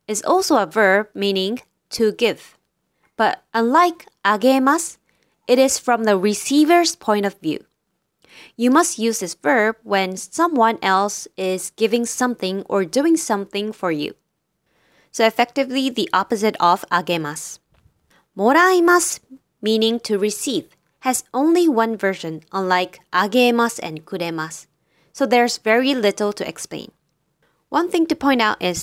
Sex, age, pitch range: female, 20-39, 190-260 Hz